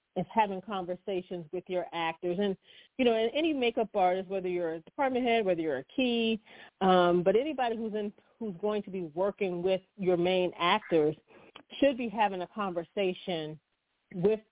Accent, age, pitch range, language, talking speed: American, 40-59, 175-205 Hz, English, 175 wpm